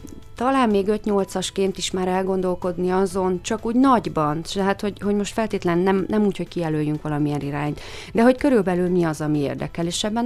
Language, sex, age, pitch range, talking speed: Hungarian, female, 30-49, 170-205 Hz, 180 wpm